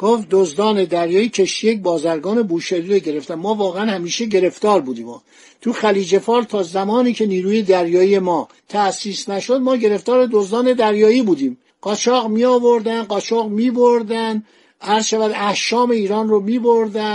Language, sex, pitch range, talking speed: Persian, male, 195-235 Hz, 135 wpm